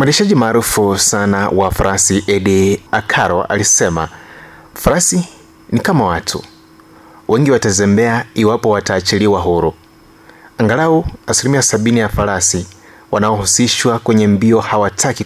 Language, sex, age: Swahili, male, 30-49